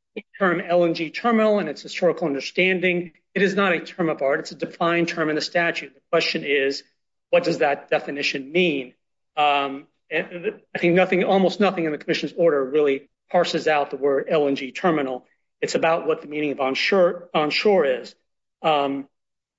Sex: male